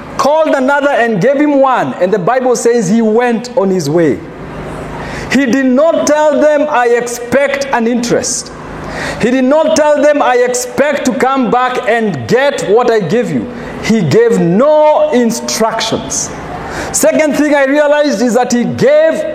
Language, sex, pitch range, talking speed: English, male, 230-285 Hz, 160 wpm